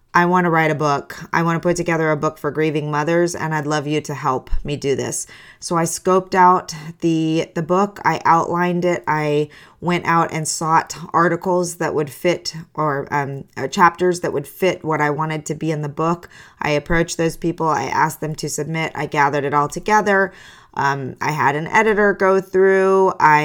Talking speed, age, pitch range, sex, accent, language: 205 wpm, 20-39, 150-180 Hz, female, American, English